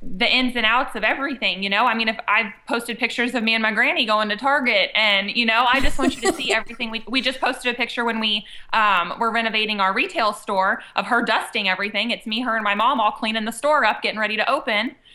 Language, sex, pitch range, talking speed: English, female, 200-245 Hz, 260 wpm